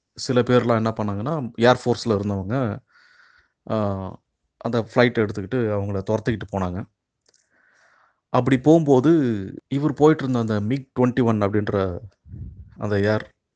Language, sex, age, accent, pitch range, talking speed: Tamil, male, 30-49, native, 105-125 Hz, 95 wpm